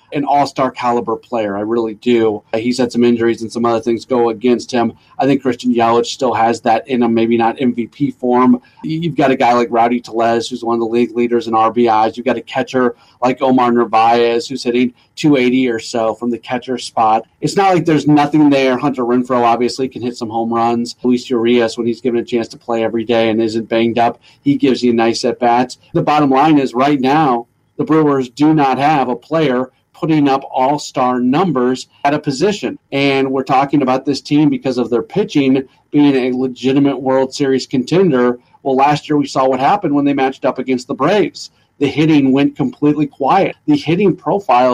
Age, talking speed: 30-49, 205 wpm